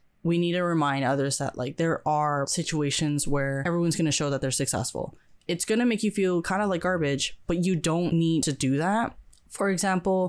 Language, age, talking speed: English, 10-29, 215 wpm